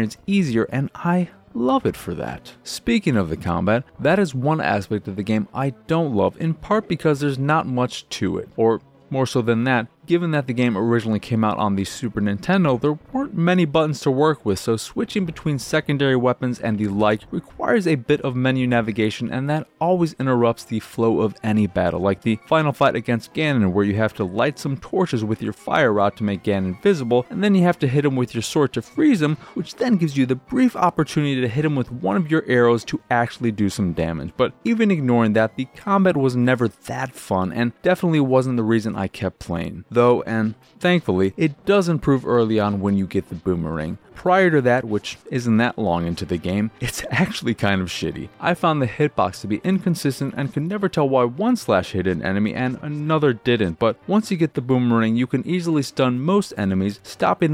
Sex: male